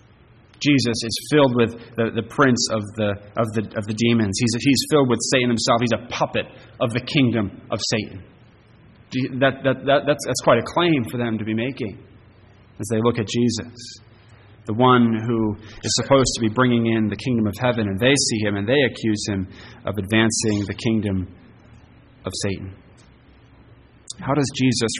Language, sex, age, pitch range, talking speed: English, male, 30-49, 105-125 Hz, 180 wpm